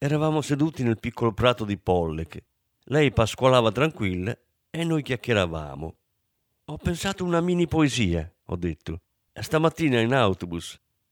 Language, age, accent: Italian, 50-69, native